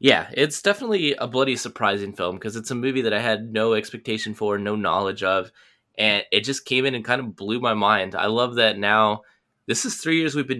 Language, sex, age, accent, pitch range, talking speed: English, male, 10-29, American, 105-120 Hz, 230 wpm